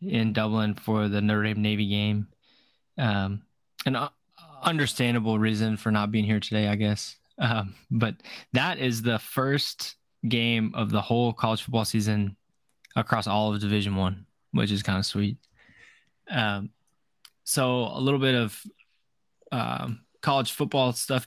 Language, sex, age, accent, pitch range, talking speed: English, male, 20-39, American, 100-120 Hz, 145 wpm